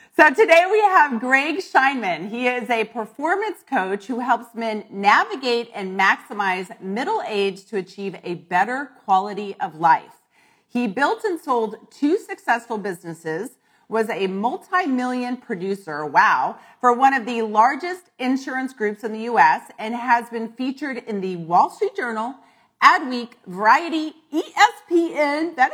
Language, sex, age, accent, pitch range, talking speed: English, female, 40-59, American, 210-315 Hz, 140 wpm